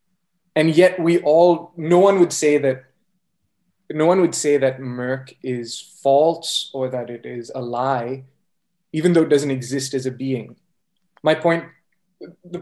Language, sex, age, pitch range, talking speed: English, male, 20-39, 130-180 Hz, 160 wpm